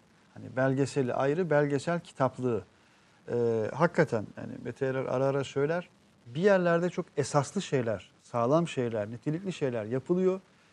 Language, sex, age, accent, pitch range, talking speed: Turkish, male, 50-69, native, 135-180 Hz, 125 wpm